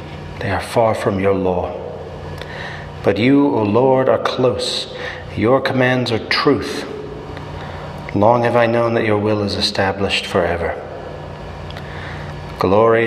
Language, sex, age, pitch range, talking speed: English, male, 40-59, 80-115 Hz, 125 wpm